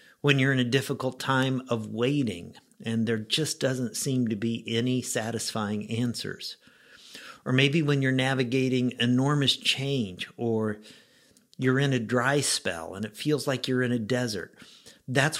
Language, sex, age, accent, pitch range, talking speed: English, male, 50-69, American, 120-145 Hz, 155 wpm